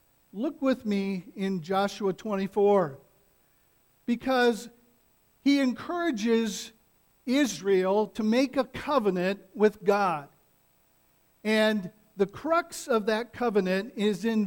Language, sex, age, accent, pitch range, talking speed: English, male, 50-69, American, 195-235 Hz, 100 wpm